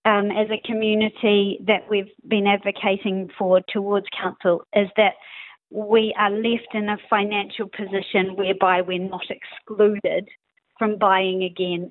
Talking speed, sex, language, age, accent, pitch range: 135 wpm, female, English, 40-59, Australian, 185-220 Hz